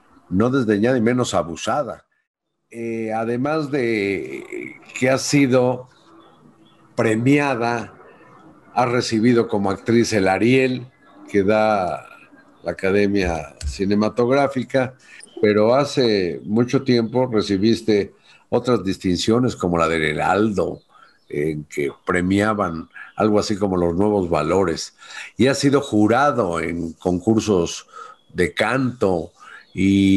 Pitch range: 95-120 Hz